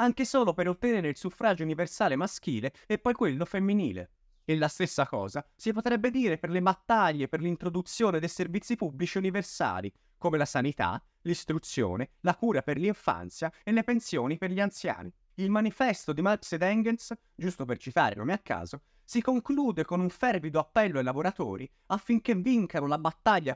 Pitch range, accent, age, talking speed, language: 150-225 Hz, native, 30-49, 165 wpm, Italian